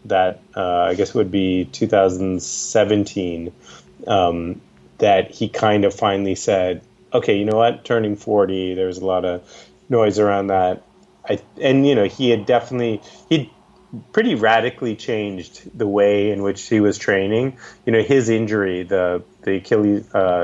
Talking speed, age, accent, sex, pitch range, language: 155 wpm, 30-49, American, male, 95-125 Hz, English